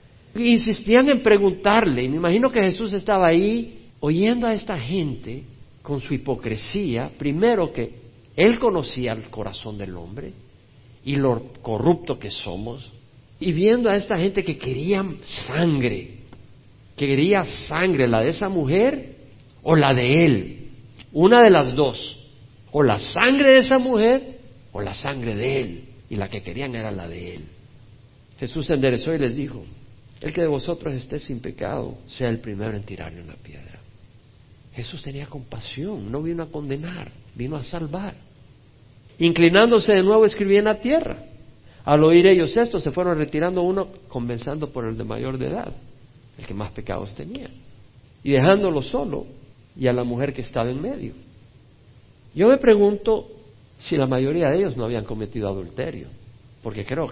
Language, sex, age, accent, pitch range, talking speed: Spanish, male, 50-69, Mexican, 115-170 Hz, 160 wpm